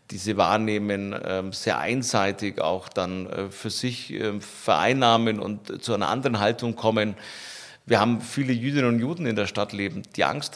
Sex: male